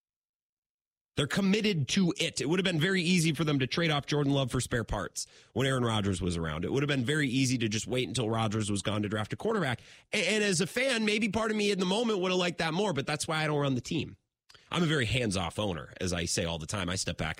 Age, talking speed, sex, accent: 30-49, 275 wpm, male, American